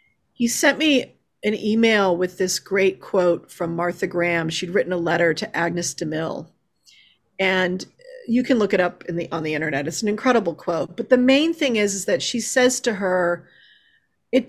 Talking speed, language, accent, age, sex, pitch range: 190 wpm, English, American, 40-59, female, 190-265 Hz